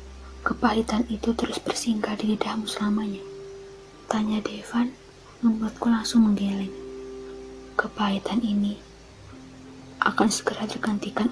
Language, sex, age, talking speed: Indonesian, female, 20-39, 90 wpm